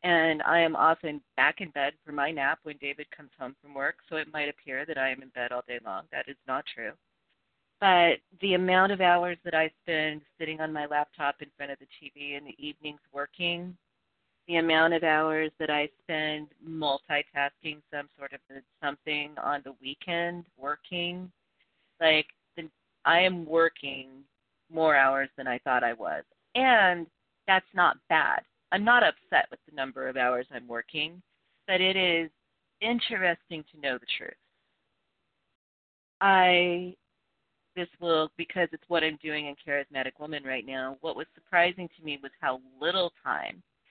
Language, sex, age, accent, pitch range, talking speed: English, female, 30-49, American, 140-170 Hz, 170 wpm